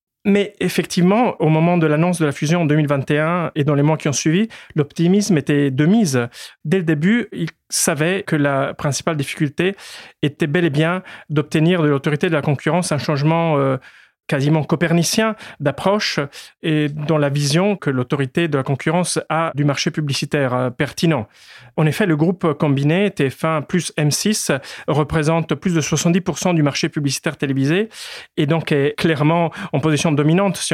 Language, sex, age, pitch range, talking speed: French, male, 30-49, 140-170 Hz, 165 wpm